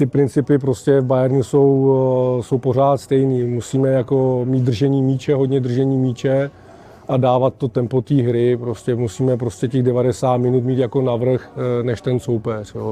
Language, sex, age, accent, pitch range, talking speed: Czech, male, 40-59, native, 125-140 Hz, 165 wpm